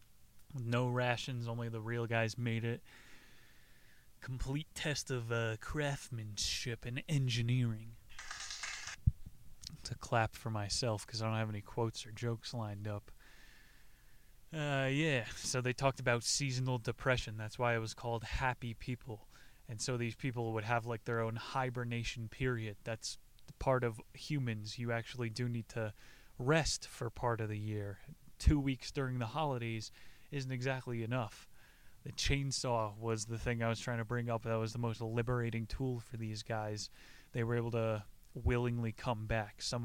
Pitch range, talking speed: 110-130 Hz, 160 wpm